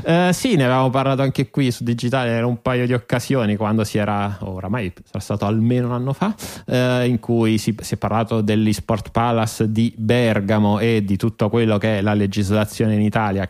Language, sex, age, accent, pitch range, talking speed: Italian, male, 30-49, native, 95-115 Hz, 205 wpm